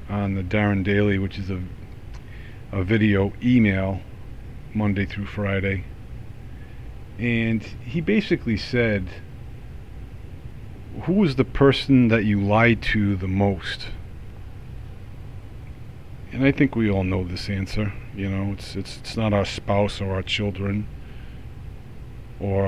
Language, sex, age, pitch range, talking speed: English, male, 50-69, 100-120 Hz, 120 wpm